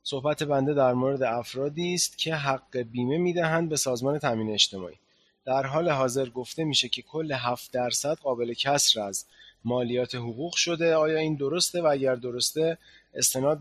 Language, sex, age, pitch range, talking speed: Persian, male, 30-49, 125-155 Hz, 160 wpm